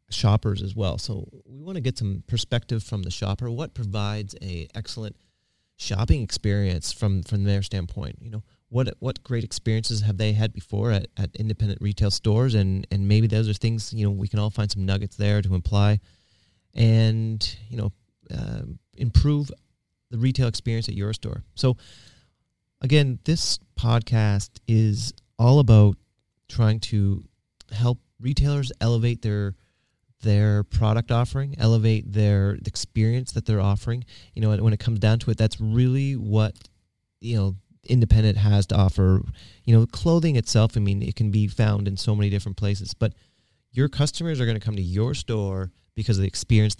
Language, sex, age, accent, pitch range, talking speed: English, male, 30-49, American, 100-115 Hz, 170 wpm